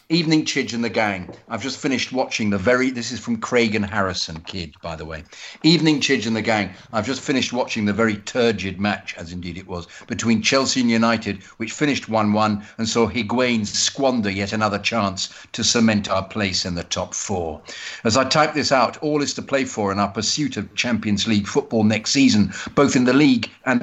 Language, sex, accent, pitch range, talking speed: English, male, British, 100-130 Hz, 210 wpm